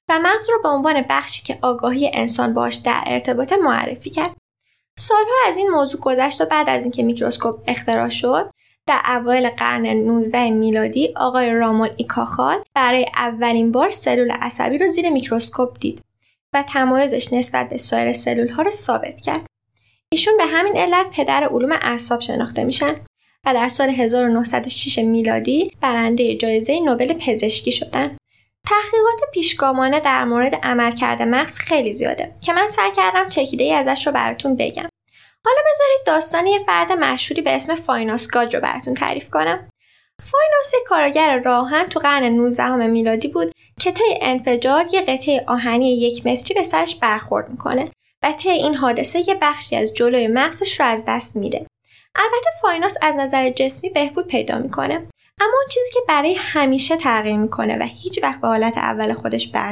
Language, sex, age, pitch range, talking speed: Persian, female, 10-29, 235-325 Hz, 160 wpm